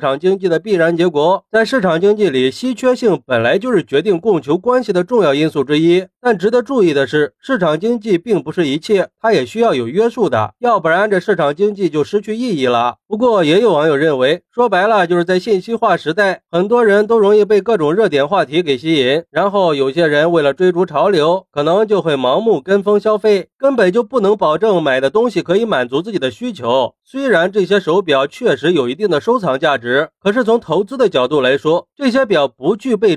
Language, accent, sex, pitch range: Chinese, native, male, 165-230 Hz